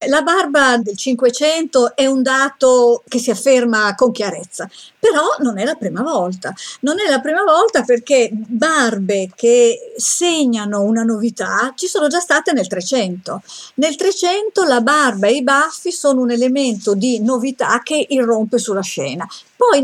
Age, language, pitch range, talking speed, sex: 50-69, Italian, 230-300 Hz, 155 wpm, female